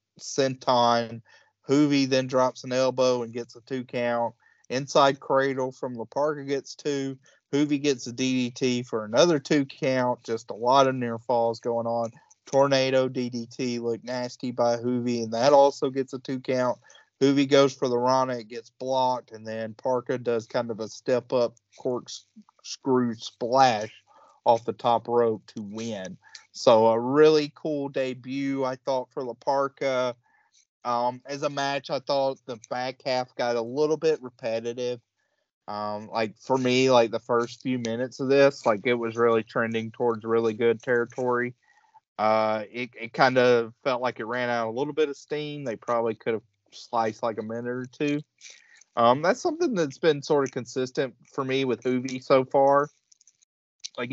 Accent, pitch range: American, 115-135 Hz